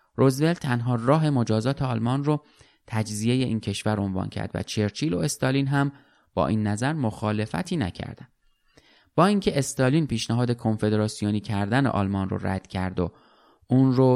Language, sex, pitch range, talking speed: Persian, male, 100-130 Hz, 145 wpm